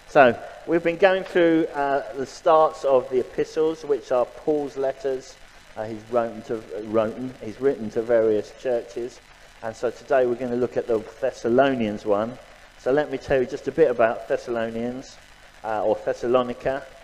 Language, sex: English, male